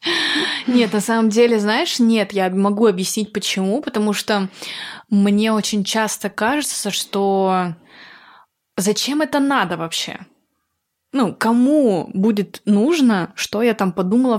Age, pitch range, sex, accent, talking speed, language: 20-39, 190-255 Hz, female, native, 120 wpm, Russian